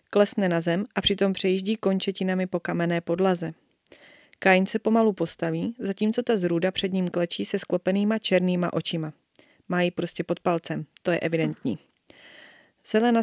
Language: Czech